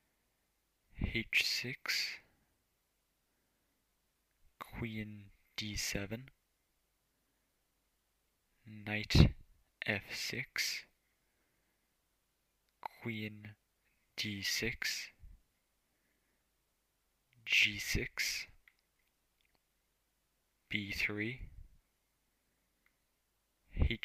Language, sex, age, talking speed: English, male, 20-39, 35 wpm